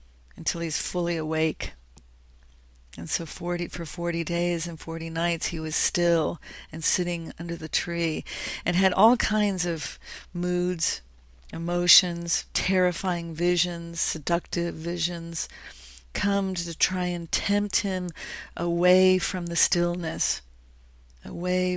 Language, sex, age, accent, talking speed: English, female, 40-59, American, 120 wpm